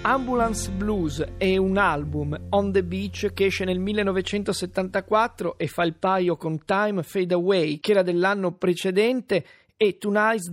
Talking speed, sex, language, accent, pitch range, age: 150 wpm, male, Italian, native, 175-210 Hz, 30-49